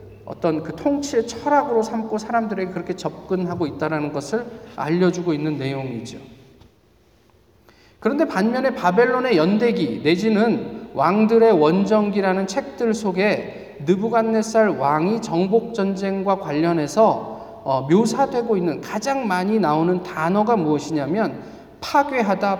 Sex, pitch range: male, 155-230 Hz